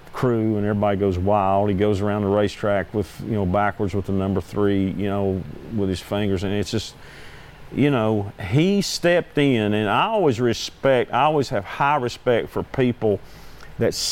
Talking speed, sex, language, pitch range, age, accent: 185 wpm, male, English, 95-115 Hz, 50-69, American